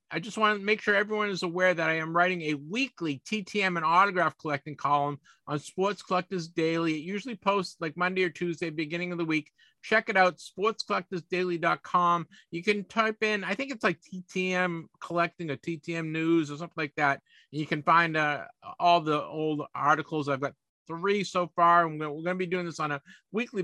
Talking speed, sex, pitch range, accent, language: 200 wpm, male, 155-195 Hz, American, English